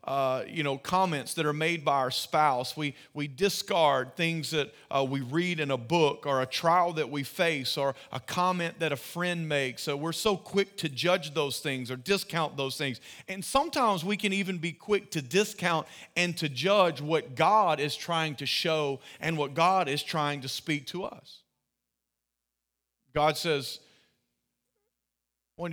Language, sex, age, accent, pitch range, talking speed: English, male, 40-59, American, 135-185 Hz, 175 wpm